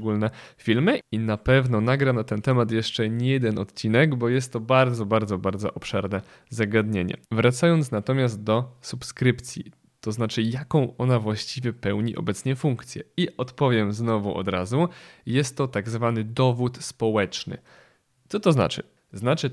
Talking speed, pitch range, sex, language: 145 wpm, 110-130 Hz, male, Polish